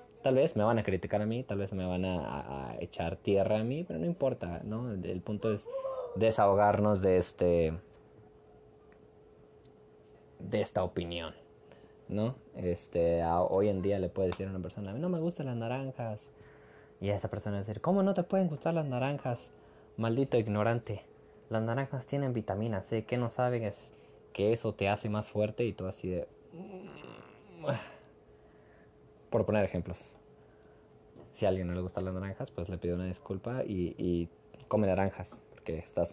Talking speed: 185 wpm